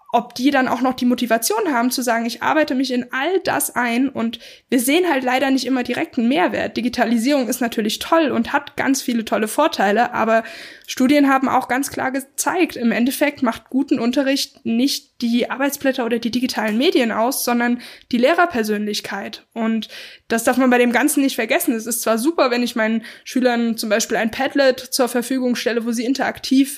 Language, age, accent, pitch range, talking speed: German, 10-29, German, 230-275 Hz, 195 wpm